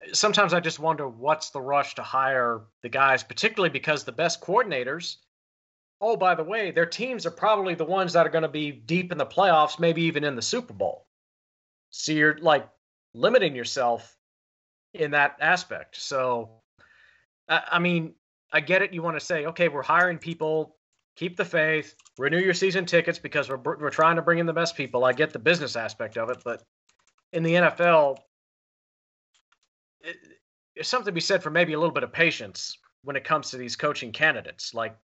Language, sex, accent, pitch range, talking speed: English, male, American, 135-170 Hz, 190 wpm